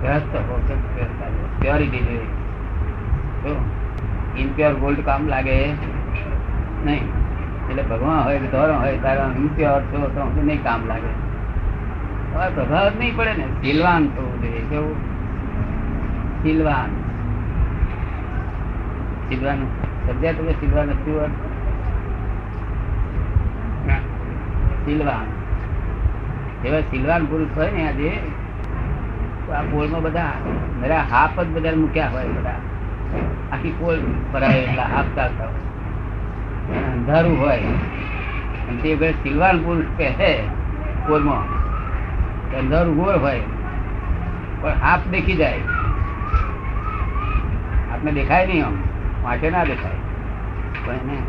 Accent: native